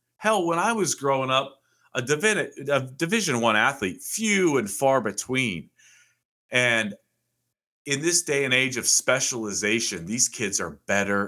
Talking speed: 150 wpm